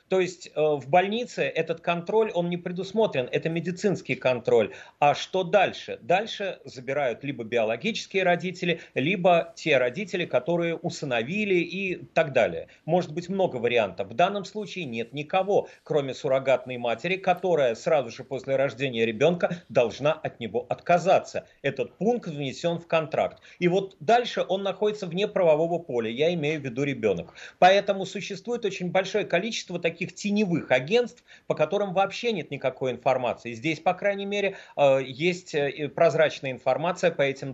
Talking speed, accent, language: 145 wpm, native, Russian